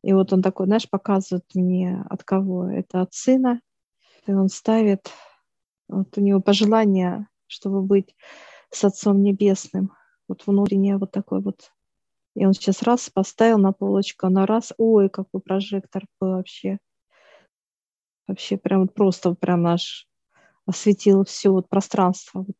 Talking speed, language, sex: 145 wpm, Russian, female